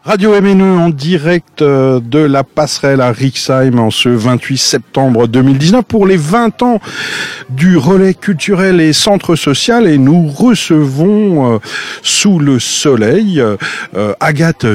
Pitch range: 110-155 Hz